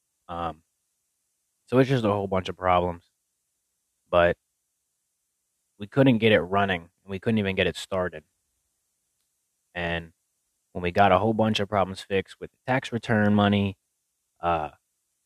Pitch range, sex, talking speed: 90-100 Hz, male, 145 wpm